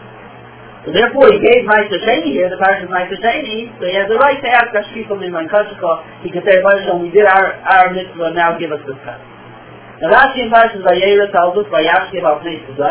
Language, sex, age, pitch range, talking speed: Italian, male, 30-49, 175-230 Hz, 150 wpm